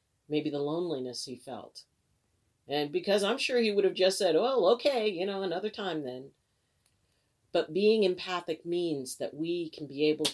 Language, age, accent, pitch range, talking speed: English, 40-59, American, 125-165 Hz, 180 wpm